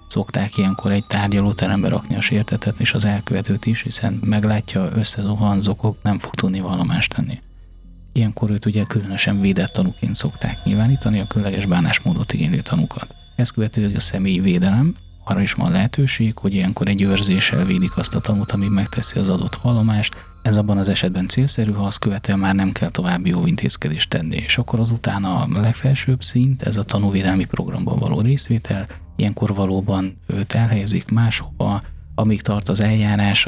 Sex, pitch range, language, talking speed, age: male, 100-115 Hz, Hungarian, 160 wpm, 30-49